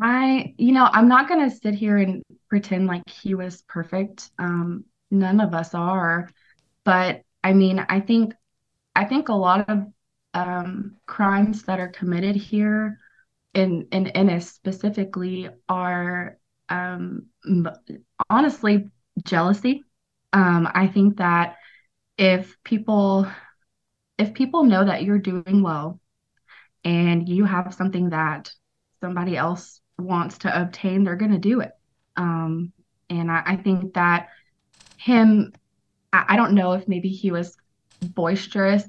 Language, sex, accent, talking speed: English, female, American, 135 wpm